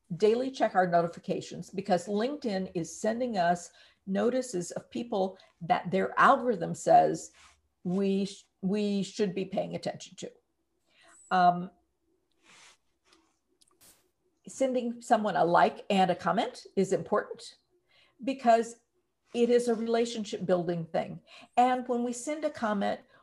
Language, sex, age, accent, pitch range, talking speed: English, female, 50-69, American, 180-245 Hz, 120 wpm